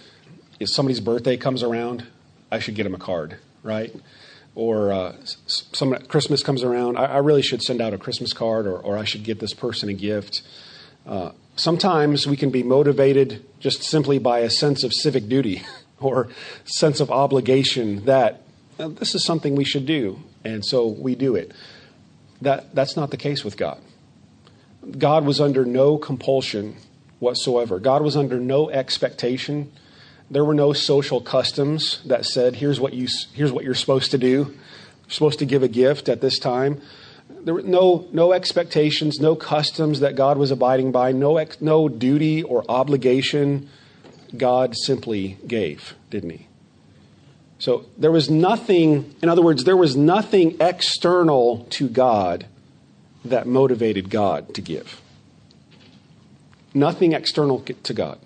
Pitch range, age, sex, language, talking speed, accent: 125-150 Hz, 40-59, male, English, 160 wpm, American